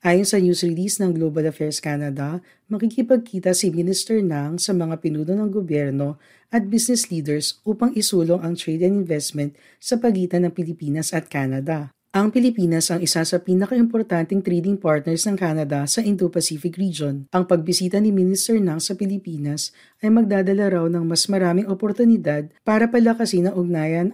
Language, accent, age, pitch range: Filipino, native, 40-59, 160-205 Hz